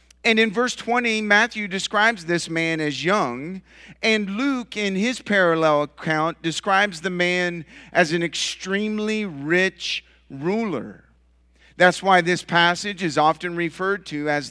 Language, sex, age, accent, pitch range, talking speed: English, male, 50-69, American, 135-205 Hz, 135 wpm